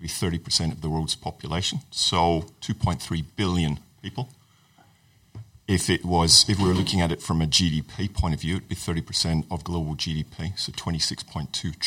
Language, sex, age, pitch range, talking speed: English, male, 40-59, 80-100 Hz, 160 wpm